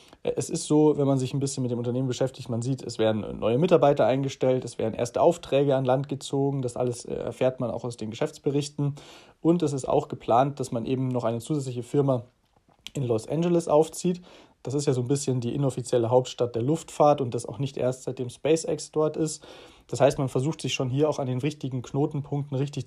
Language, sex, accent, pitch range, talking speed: German, male, German, 125-150 Hz, 220 wpm